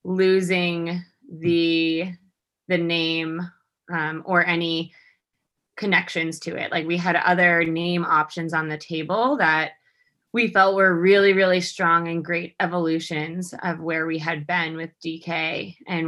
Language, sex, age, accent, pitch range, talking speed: English, female, 20-39, American, 160-180 Hz, 140 wpm